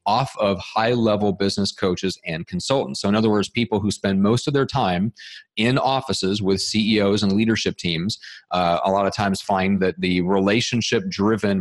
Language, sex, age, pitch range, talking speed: English, male, 30-49, 95-110 Hz, 175 wpm